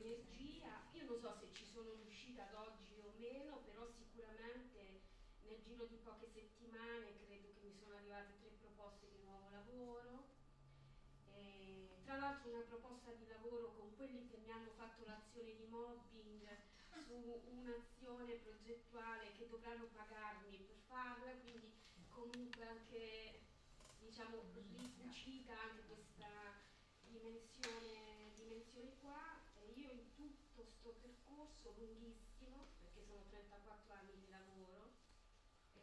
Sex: female